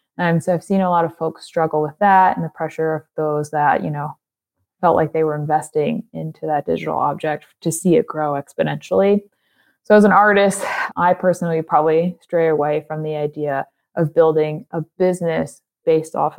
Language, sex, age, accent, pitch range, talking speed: English, female, 20-39, American, 155-185 Hz, 185 wpm